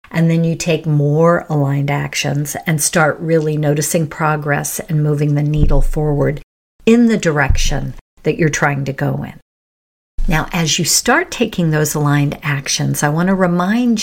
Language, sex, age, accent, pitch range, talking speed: English, female, 50-69, American, 150-200 Hz, 165 wpm